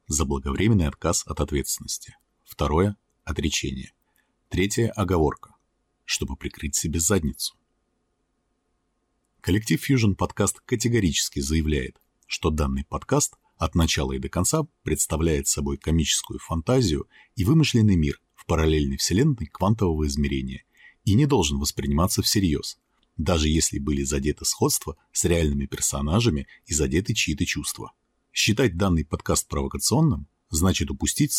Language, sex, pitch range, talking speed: Russian, male, 75-105 Hz, 120 wpm